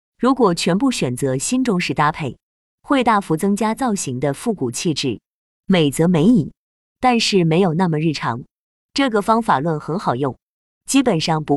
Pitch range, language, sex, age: 150-220 Hz, Chinese, female, 20-39